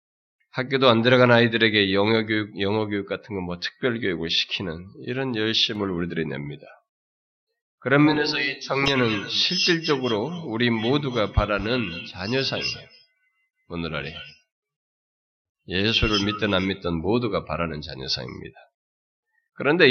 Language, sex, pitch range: Korean, male, 105-140 Hz